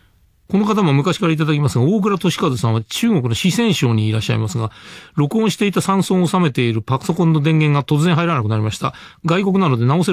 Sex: male